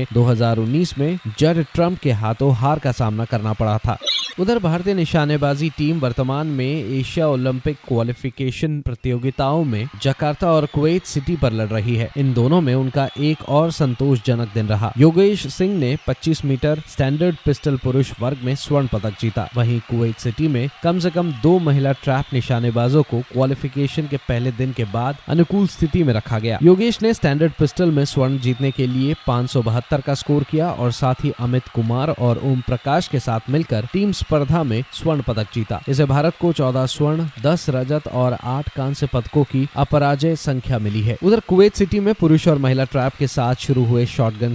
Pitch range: 125-155 Hz